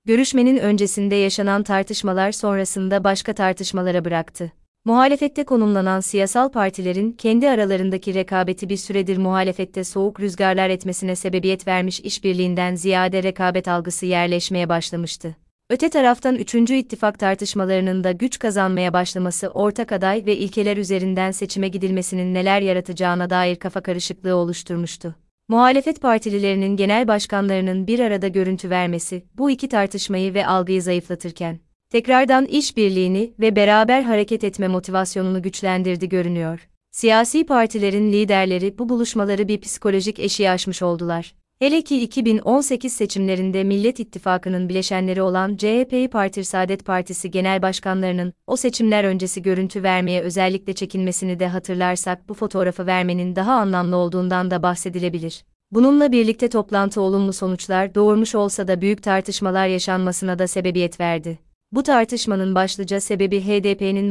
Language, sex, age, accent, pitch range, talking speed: Turkish, female, 30-49, native, 185-210 Hz, 125 wpm